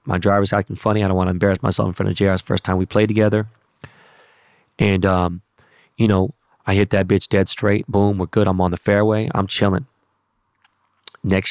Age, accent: 20-39, American